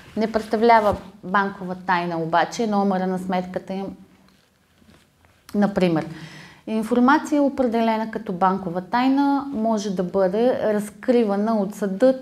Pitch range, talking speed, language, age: 195-245 Hz, 105 wpm, Bulgarian, 20-39